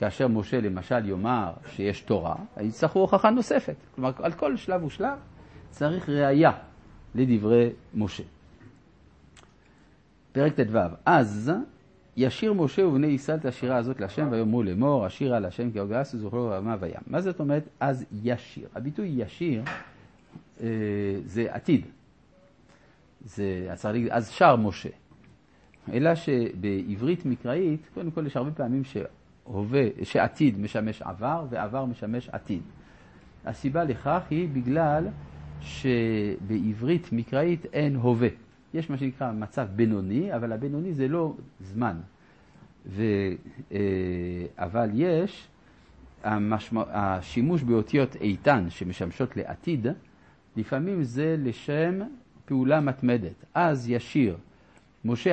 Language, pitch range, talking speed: Hebrew, 105-140 Hz, 110 wpm